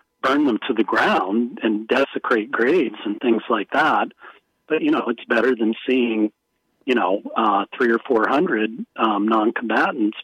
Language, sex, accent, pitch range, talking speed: English, male, American, 110-135 Hz, 170 wpm